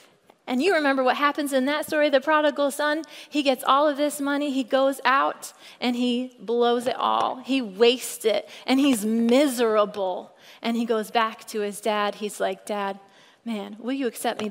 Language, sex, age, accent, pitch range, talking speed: English, female, 30-49, American, 240-325 Hz, 190 wpm